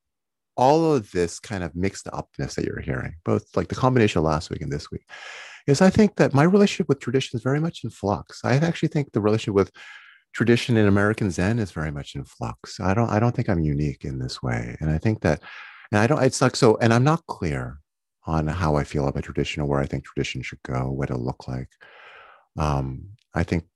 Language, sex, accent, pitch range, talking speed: English, male, American, 70-100 Hz, 230 wpm